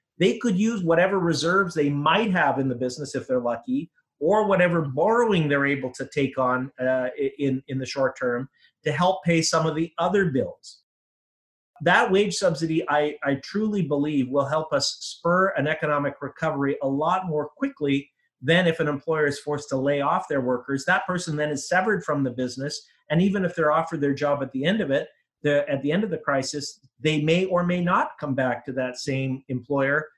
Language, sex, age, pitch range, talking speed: English, male, 30-49, 140-175 Hz, 205 wpm